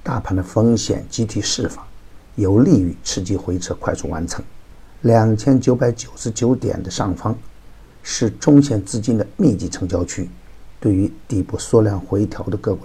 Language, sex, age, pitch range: Chinese, male, 50-69, 95-115 Hz